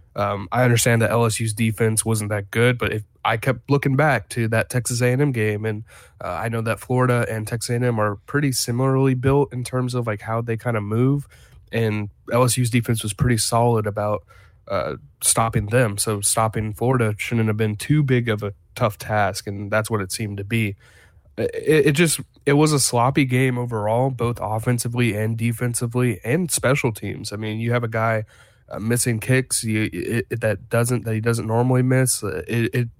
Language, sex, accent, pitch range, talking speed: English, male, American, 110-125 Hz, 195 wpm